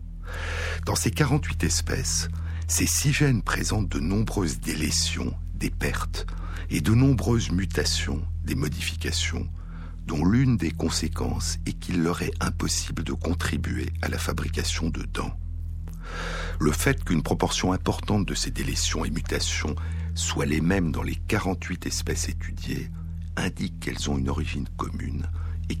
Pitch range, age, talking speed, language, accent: 80-85 Hz, 60-79, 140 wpm, French, French